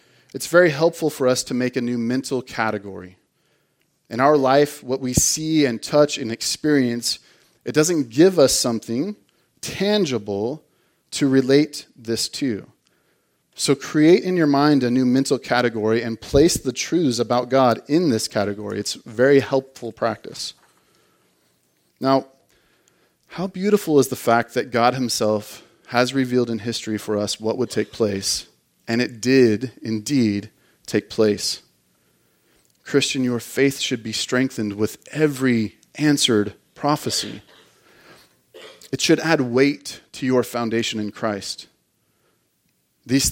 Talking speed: 135 wpm